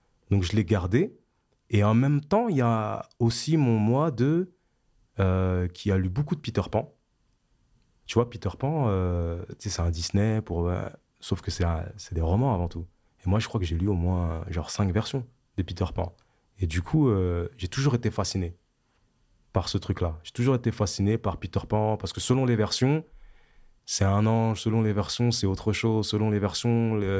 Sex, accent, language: male, French, French